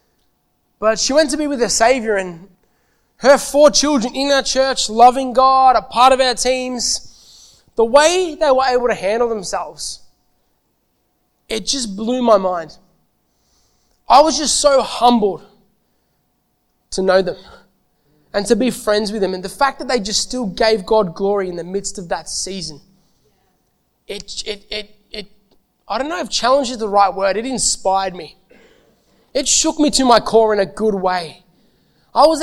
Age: 20-39